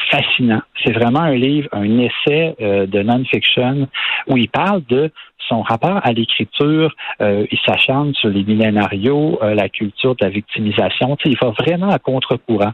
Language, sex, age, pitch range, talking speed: French, male, 50-69, 110-135 Hz, 170 wpm